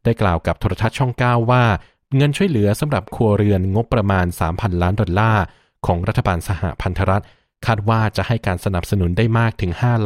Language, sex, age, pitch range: Thai, male, 20-39, 90-115 Hz